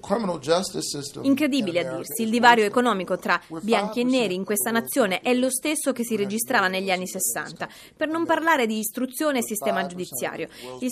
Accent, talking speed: native, 170 wpm